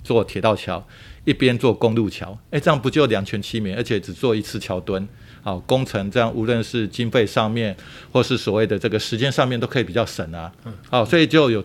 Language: Chinese